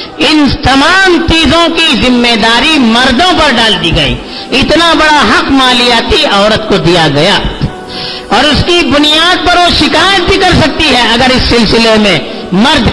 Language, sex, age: Urdu, female, 50-69